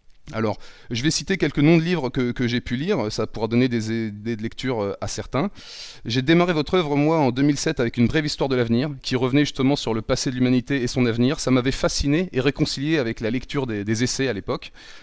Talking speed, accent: 235 wpm, French